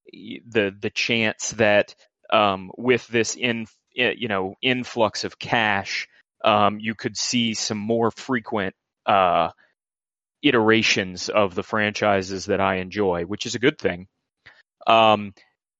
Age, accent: 30-49, American